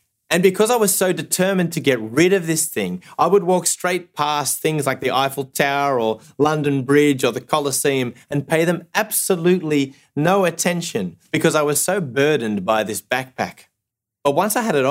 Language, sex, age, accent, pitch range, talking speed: English, male, 30-49, Australian, 110-160 Hz, 190 wpm